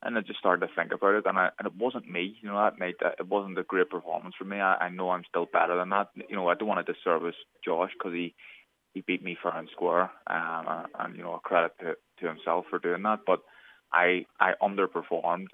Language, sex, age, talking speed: English, male, 20-39, 255 wpm